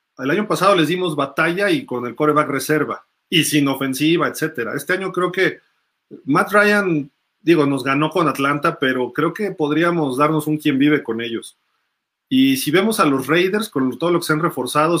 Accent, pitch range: Mexican, 145-185 Hz